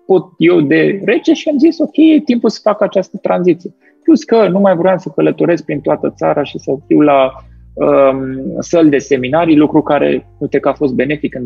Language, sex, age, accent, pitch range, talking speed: Romanian, male, 30-49, native, 135-185 Hz, 195 wpm